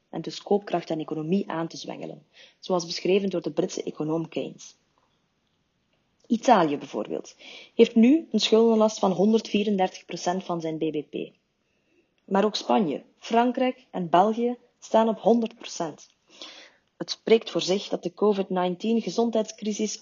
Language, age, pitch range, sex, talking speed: Dutch, 30-49, 180-220 Hz, female, 125 wpm